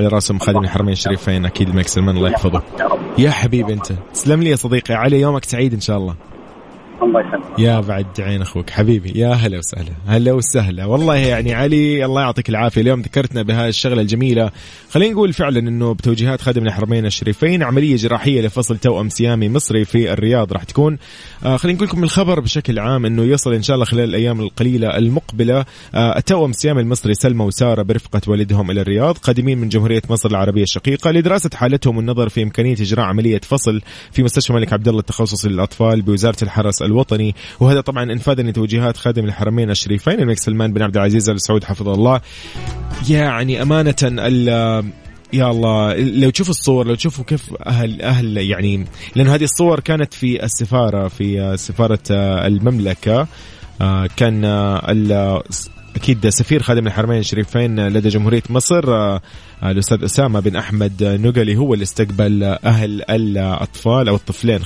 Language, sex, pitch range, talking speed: Arabic, male, 105-125 Hz, 160 wpm